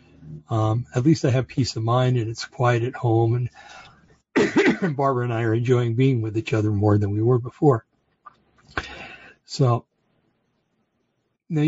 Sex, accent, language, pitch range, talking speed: male, American, English, 115-140 Hz, 155 wpm